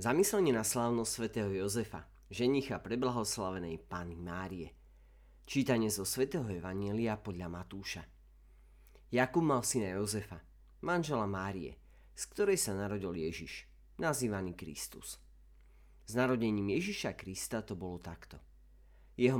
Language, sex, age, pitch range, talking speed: Slovak, male, 30-49, 80-120 Hz, 110 wpm